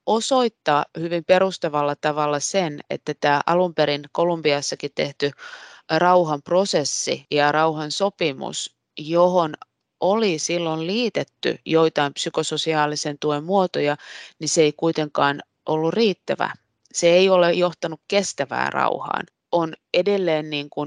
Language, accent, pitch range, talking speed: Finnish, native, 145-180 Hz, 105 wpm